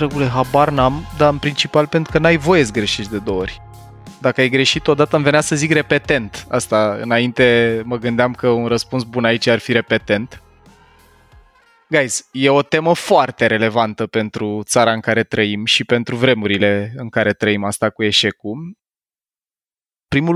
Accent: native